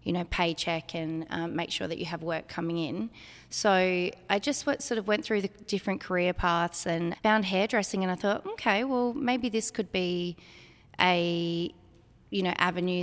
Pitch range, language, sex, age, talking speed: 170-205 Hz, English, female, 20-39, 185 wpm